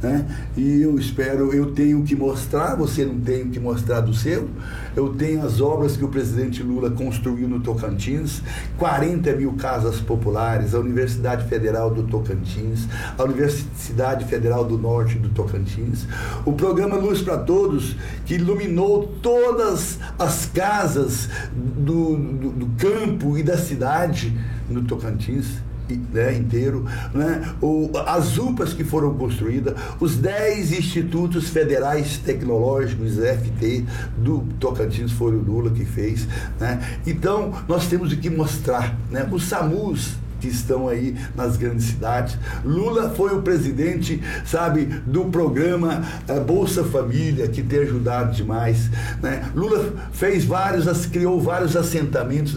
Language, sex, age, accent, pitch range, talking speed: Portuguese, male, 60-79, Brazilian, 115-160 Hz, 130 wpm